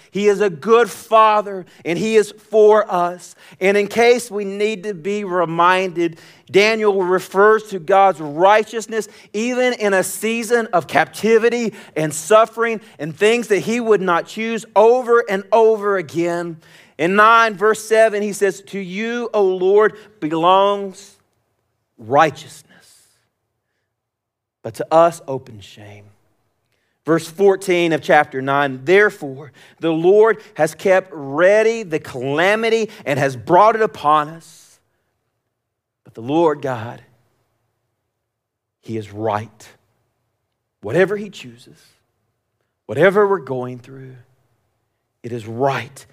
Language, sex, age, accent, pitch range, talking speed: English, male, 40-59, American, 125-205 Hz, 125 wpm